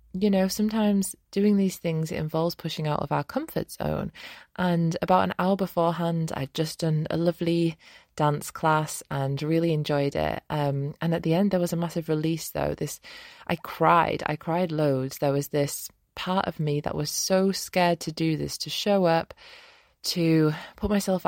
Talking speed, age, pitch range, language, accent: 185 wpm, 20-39, 150-175 Hz, English, British